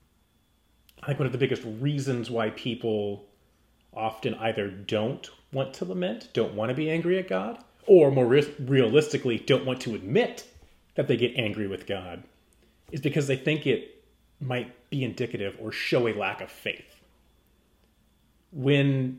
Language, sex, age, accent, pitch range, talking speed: English, male, 30-49, American, 100-135 Hz, 155 wpm